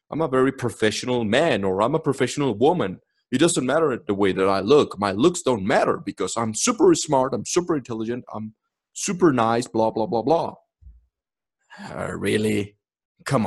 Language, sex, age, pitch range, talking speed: English, male, 30-49, 110-160 Hz, 175 wpm